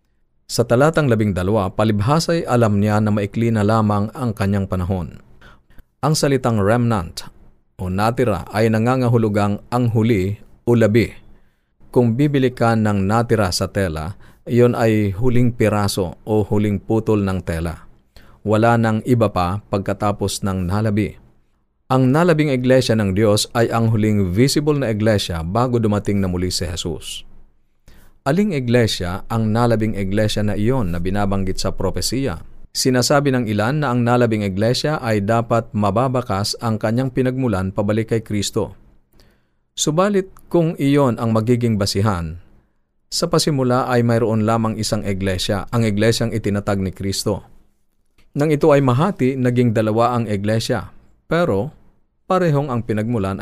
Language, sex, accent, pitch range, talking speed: Filipino, male, native, 100-120 Hz, 140 wpm